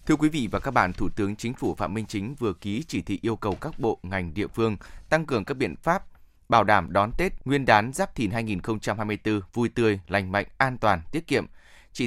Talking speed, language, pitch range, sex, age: 235 wpm, Vietnamese, 100-135 Hz, male, 20-39